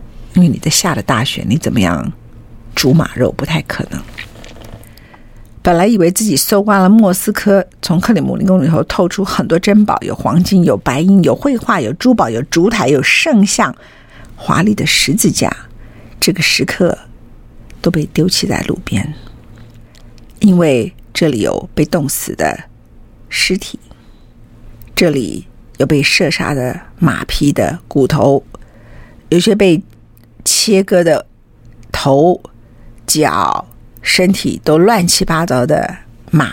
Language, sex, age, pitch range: Chinese, female, 50-69, 115-195 Hz